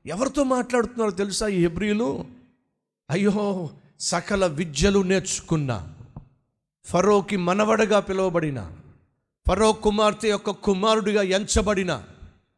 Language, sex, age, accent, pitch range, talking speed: Telugu, male, 50-69, native, 145-240 Hz, 80 wpm